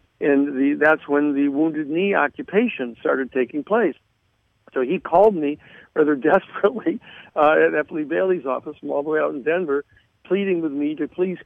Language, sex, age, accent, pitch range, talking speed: English, male, 60-79, American, 140-165 Hz, 180 wpm